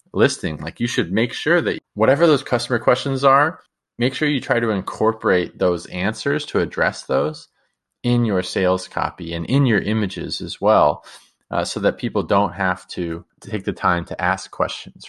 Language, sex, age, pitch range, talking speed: English, male, 20-39, 90-125 Hz, 185 wpm